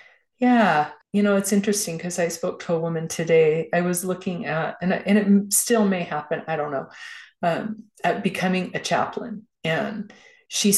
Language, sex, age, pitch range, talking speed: English, female, 30-49, 170-205 Hz, 185 wpm